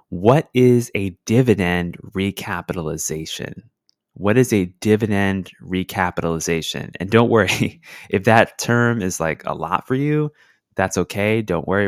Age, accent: 20-39, American